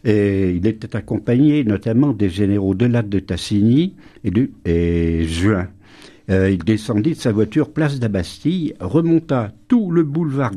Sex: male